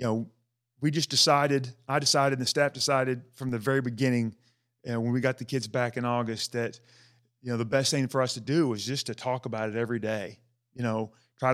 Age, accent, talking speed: 30-49, American, 240 wpm